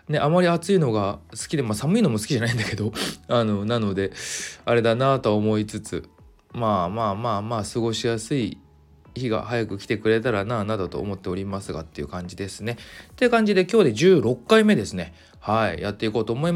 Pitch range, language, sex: 100-145 Hz, Japanese, male